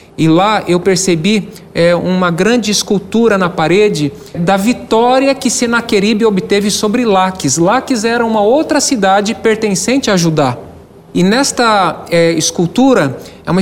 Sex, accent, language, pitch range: male, Brazilian, Portuguese, 180-230 Hz